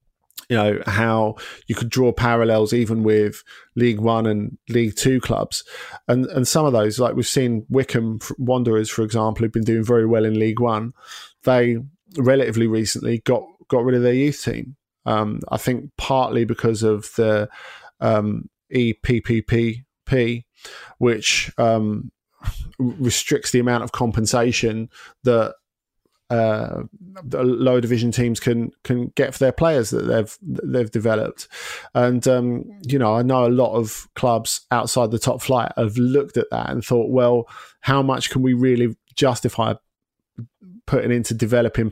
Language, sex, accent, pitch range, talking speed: English, male, British, 110-125 Hz, 155 wpm